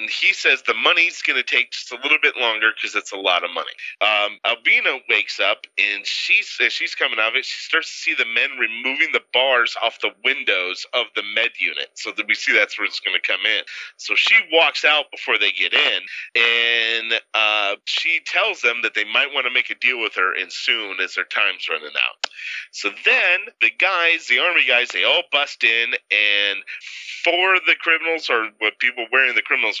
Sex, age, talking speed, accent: male, 30-49, 220 wpm, American